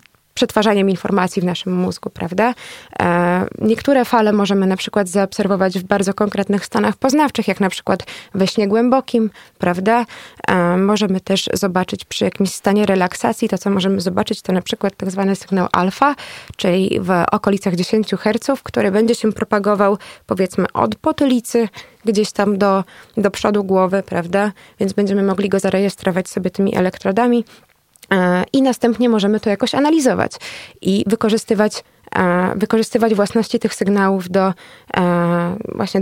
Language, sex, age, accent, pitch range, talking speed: Polish, female, 20-39, native, 190-225 Hz, 140 wpm